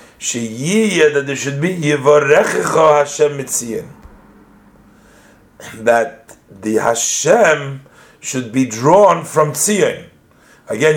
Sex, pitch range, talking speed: male, 120-150 Hz, 100 wpm